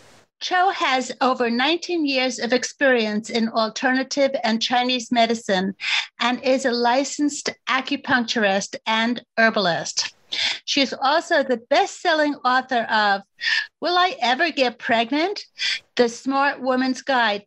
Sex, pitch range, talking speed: female, 225-280 Hz, 125 wpm